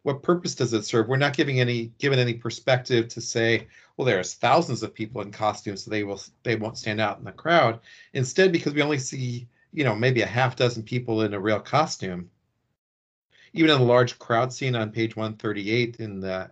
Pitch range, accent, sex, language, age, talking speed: 110-130 Hz, American, male, English, 40-59, 210 wpm